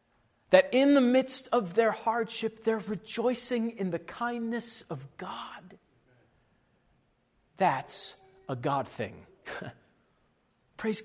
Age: 40-59